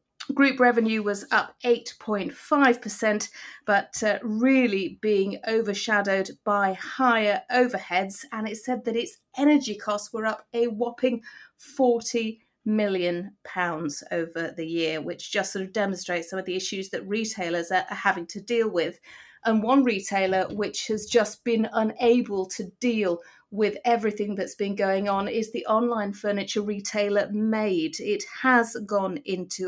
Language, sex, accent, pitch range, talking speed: English, female, British, 195-235 Hz, 145 wpm